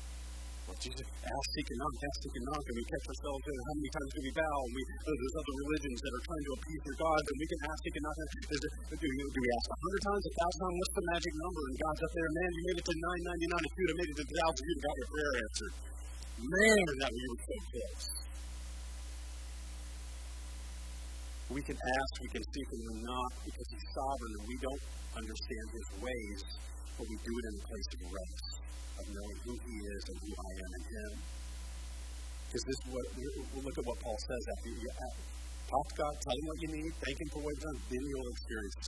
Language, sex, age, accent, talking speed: English, female, 20-39, American, 235 wpm